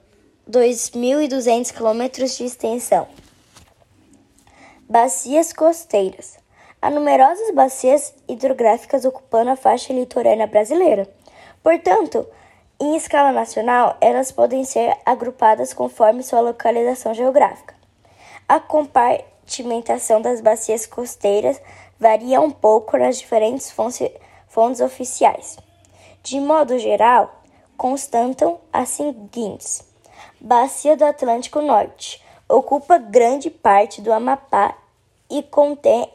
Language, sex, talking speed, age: Spanish, male, 95 wpm, 10-29